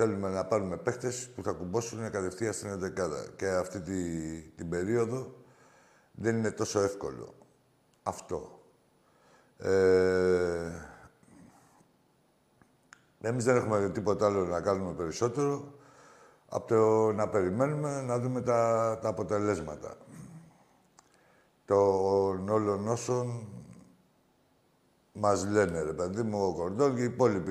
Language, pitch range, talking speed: Greek, 95-125 Hz, 100 wpm